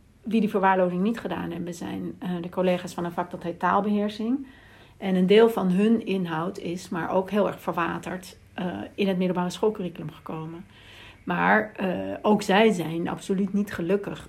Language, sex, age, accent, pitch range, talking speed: Dutch, female, 60-79, Dutch, 175-210 Hz, 170 wpm